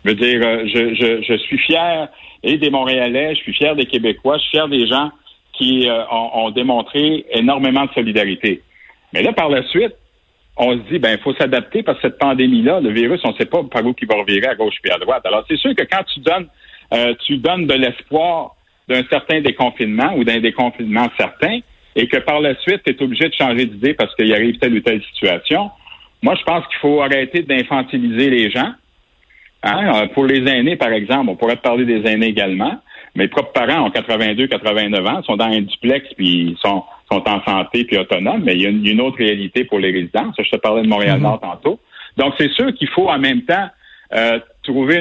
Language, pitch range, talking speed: French, 115-145 Hz, 220 wpm